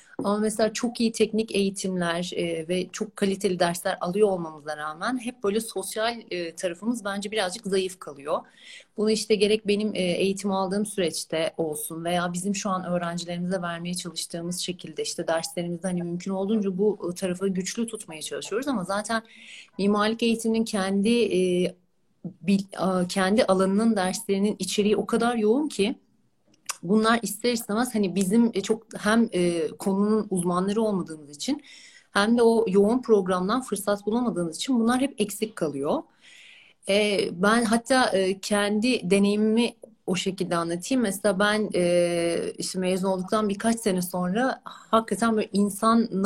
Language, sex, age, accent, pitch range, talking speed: Turkish, female, 40-59, native, 185-220 Hz, 140 wpm